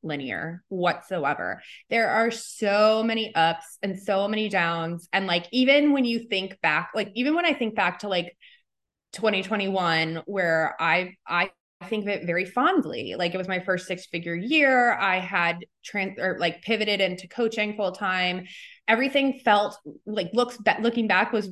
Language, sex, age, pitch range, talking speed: English, female, 20-39, 180-230 Hz, 160 wpm